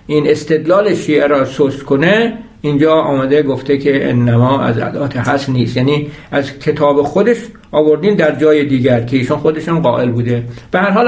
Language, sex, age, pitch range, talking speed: Persian, male, 60-79, 145-185 Hz, 150 wpm